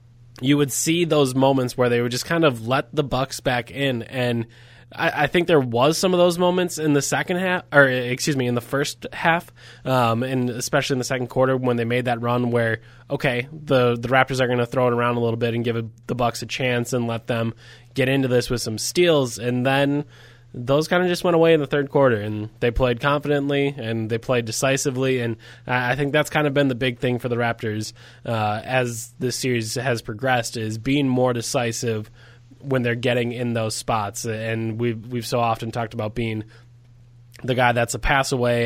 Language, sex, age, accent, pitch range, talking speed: English, male, 20-39, American, 120-135 Hz, 220 wpm